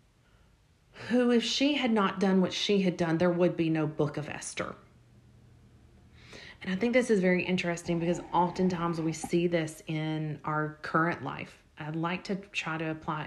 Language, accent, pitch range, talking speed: English, American, 160-205 Hz, 175 wpm